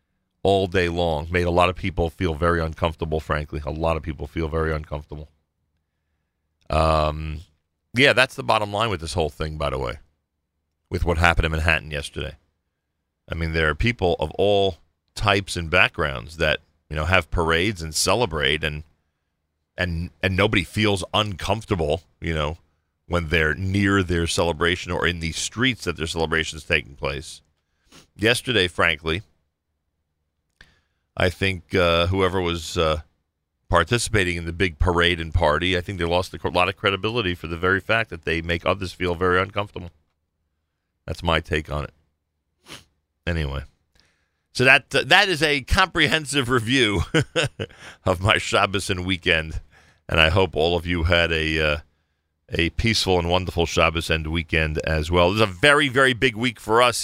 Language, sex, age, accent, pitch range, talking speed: English, male, 40-59, American, 80-95 Hz, 165 wpm